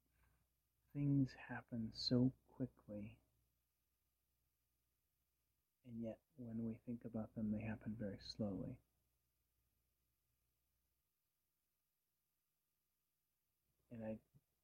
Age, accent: 40-59, American